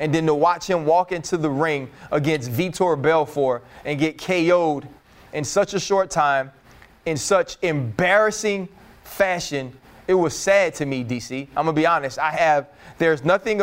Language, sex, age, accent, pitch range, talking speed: English, male, 20-39, American, 140-185 Hz, 170 wpm